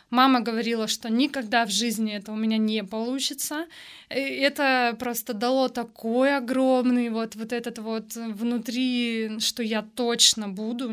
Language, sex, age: Russian, female, 20-39